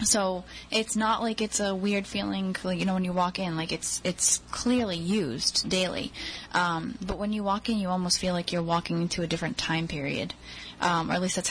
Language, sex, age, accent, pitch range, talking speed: English, female, 10-29, American, 160-190 Hz, 220 wpm